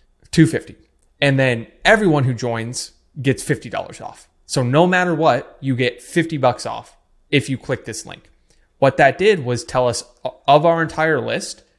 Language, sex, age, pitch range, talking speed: English, male, 20-39, 115-140 Hz, 170 wpm